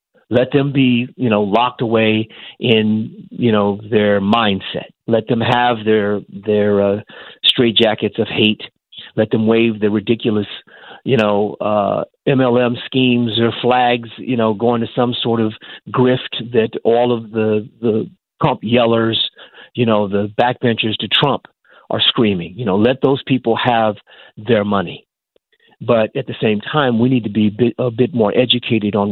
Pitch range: 110-130 Hz